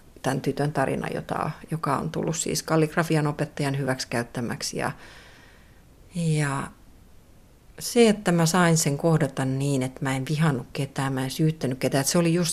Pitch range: 140-185 Hz